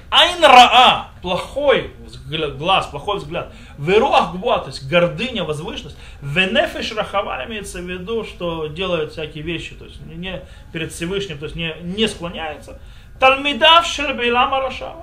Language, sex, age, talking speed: Russian, male, 30-49, 125 wpm